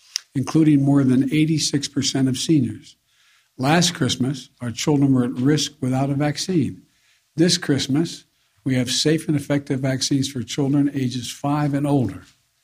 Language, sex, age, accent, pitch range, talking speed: English, male, 60-79, American, 125-150 Hz, 145 wpm